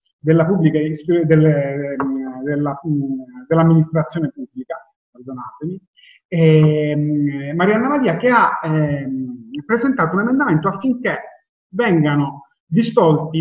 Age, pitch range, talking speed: 30-49, 150-205 Hz, 80 wpm